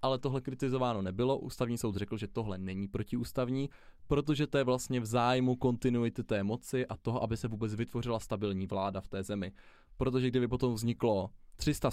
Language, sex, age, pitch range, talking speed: Czech, male, 20-39, 105-125 Hz, 180 wpm